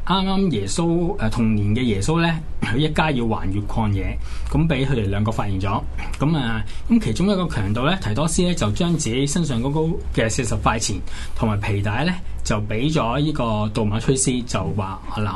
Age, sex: 20-39, male